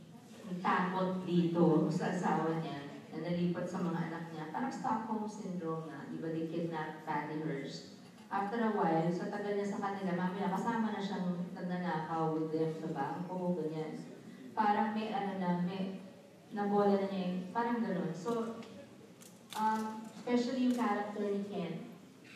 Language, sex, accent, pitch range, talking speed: Filipino, female, native, 170-210 Hz, 130 wpm